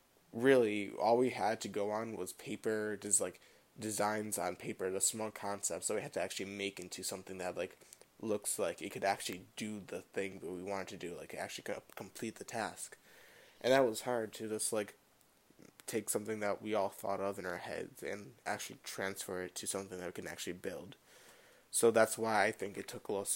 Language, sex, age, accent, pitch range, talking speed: English, male, 10-29, American, 100-115 Hz, 210 wpm